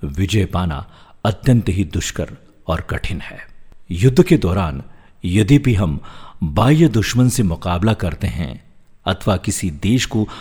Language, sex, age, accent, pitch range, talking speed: Hindi, male, 50-69, native, 90-120 Hz, 140 wpm